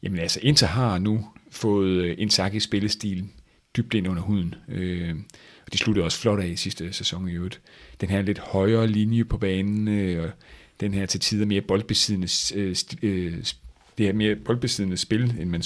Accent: native